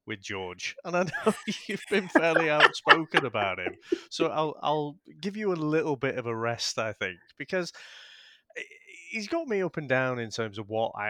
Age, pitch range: 30-49, 110-175 Hz